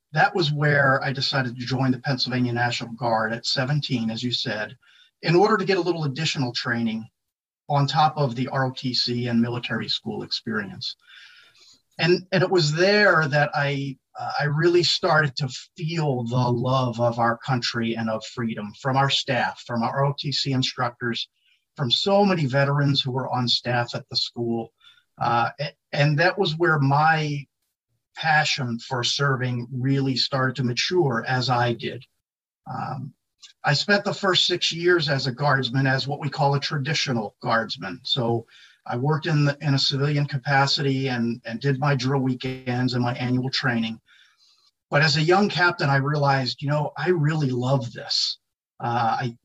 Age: 40-59